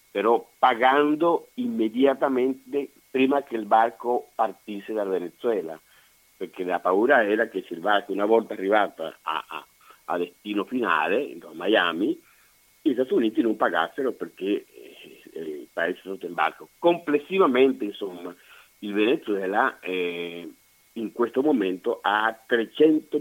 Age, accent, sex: 50-69, native, male